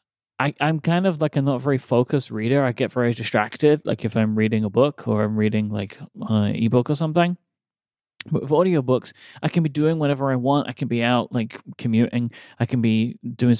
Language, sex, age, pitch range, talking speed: English, male, 30-49, 115-150 Hz, 210 wpm